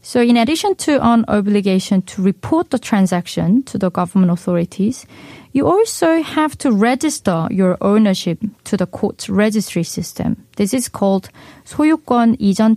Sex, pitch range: female, 185-250 Hz